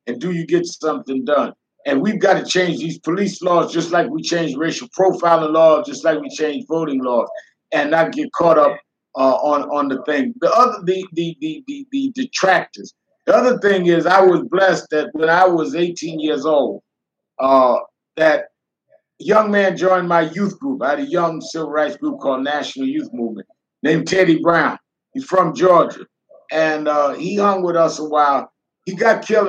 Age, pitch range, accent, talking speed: 50-69, 150-190 Hz, American, 190 wpm